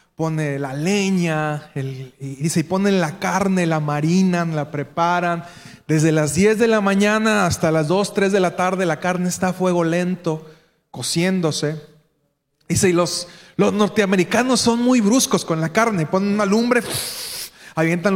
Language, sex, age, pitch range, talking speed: Spanish, male, 30-49, 170-220 Hz, 160 wpm